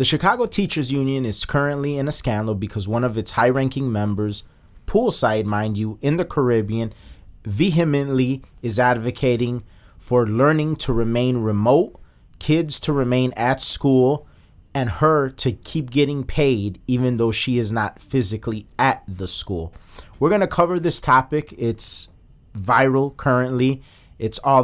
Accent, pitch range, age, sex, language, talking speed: American, 110-145 Hz, 30-49, male, English, 150 wpm